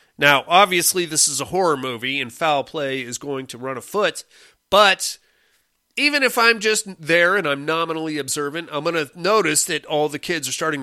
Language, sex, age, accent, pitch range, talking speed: English, male, 30-49, American, 135-190 Hz, 195 wpm